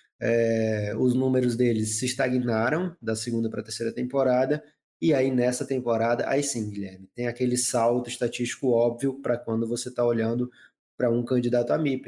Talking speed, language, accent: 170 wpm, Portuguese, Brazilian